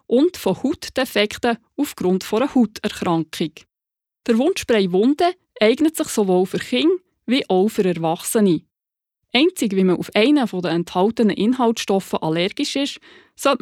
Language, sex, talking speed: German, female, 130 wpm